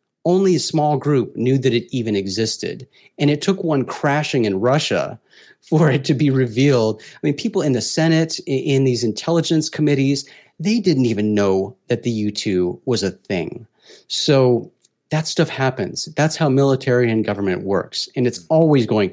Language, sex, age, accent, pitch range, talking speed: English, male, 30-49, American, 105-140 Hz, 175 wpm